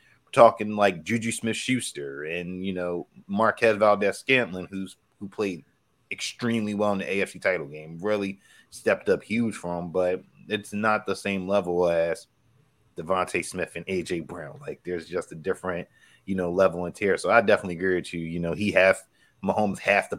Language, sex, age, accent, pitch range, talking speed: English, male, 30-49, American, 95-110 Hz, 185 wpm